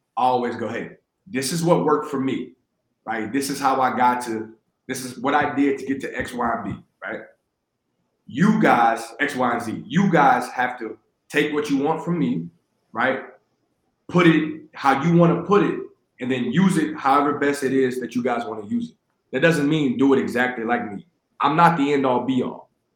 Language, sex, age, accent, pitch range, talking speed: English, male, 30-49, American, 125-150 Hz, 220 wpm